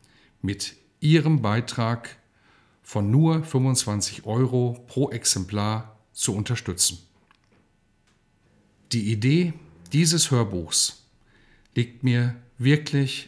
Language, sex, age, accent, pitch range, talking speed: German, male, 50-69, German, 110-140 Hz, 80 wpm